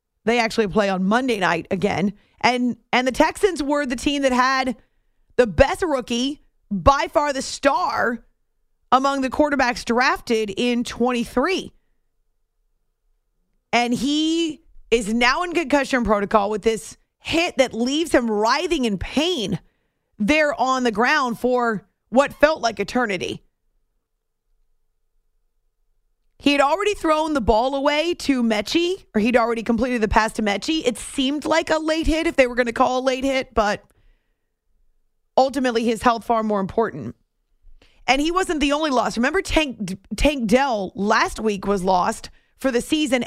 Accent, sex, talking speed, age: American, female, 155 wpm, 40-59